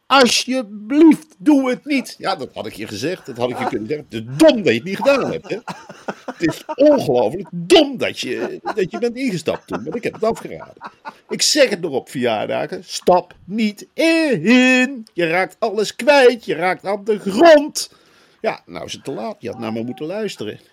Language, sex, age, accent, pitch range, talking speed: Dutch, male, 50-69, Dutch, 160-240 Hz, 205 wpm